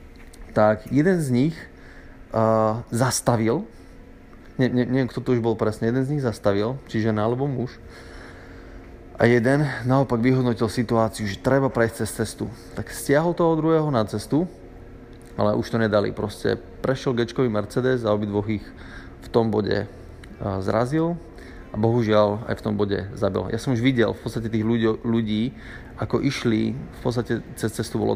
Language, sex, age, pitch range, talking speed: Slovak, male, 30-49, 105-125 Hz, 160 wpm